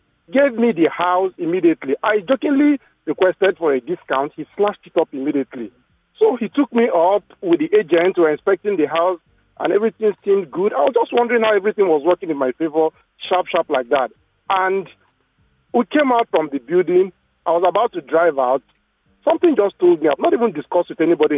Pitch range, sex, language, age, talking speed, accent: 150-235 Hz, male, English, 40-59, 200 wpm, Nigerian